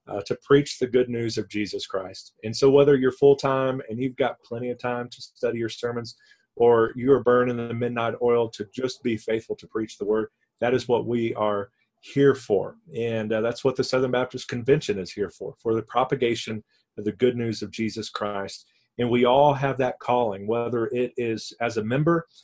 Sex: male